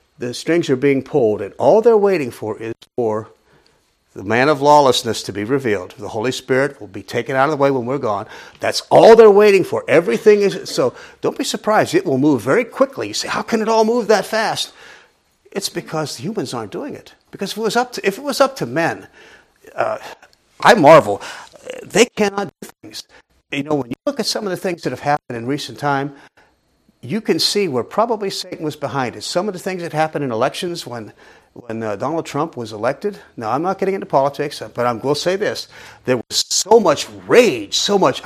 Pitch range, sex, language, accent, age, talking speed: 135-210 Hz, male, English, American, 50-69, 225 wpm